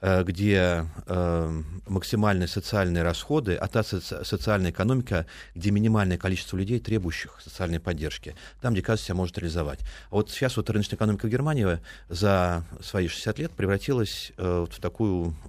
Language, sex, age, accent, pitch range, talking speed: Russian, male, 30-49, native, 85-105 Hz, 150 wpm